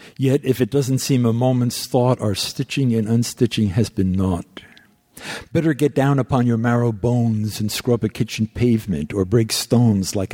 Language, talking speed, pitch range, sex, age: English, 180 wpm, 100-125 Hz, male, 60-79